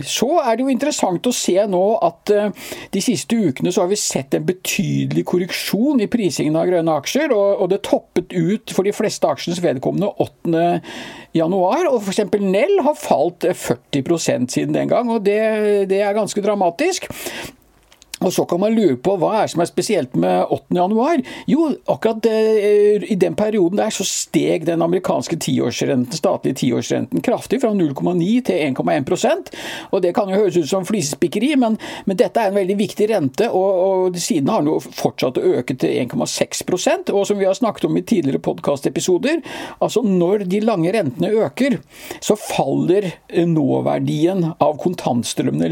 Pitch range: 175-220 Hz